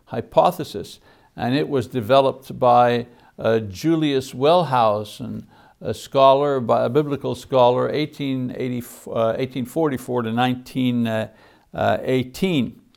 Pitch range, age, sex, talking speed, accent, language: 125-155 Hz, 60-79, male, 80 wpm, American, English